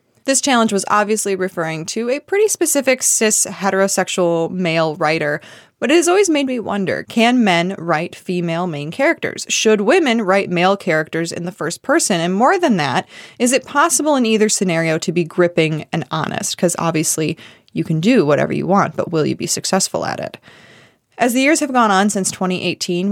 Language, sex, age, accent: English, female, 20-39, American